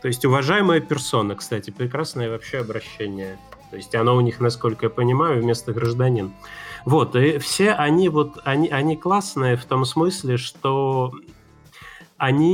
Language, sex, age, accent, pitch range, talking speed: Russian, male, 20-39, native, 120-150 Hz, 150 wpm